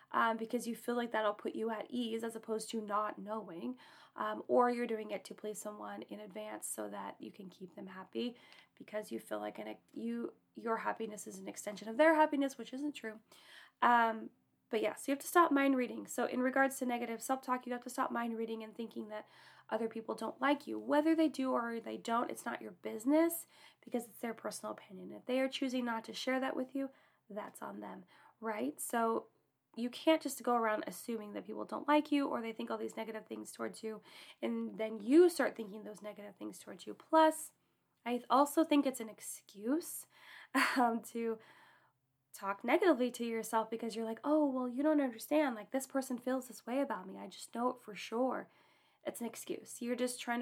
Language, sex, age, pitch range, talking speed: English, female, 20-39, 210-260 Hz, 215 wpm